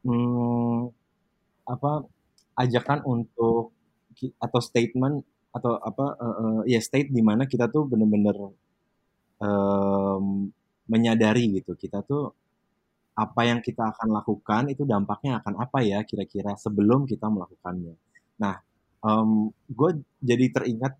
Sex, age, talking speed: male, 20-39, 120 wpm